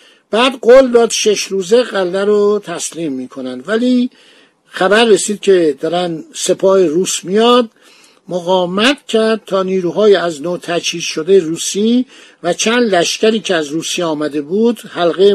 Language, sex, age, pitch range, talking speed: Persian, male, 50-69, 175-225 Hz, 135 wpm